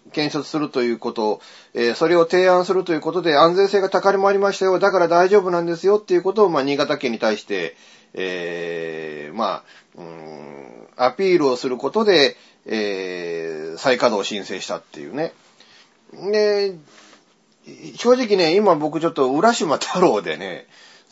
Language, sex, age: Japanese, male, 40-59